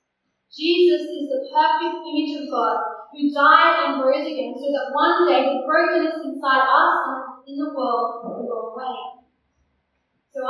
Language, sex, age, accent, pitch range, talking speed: English, female, 10-29, Australian, 250-305 Hz, 160 wpm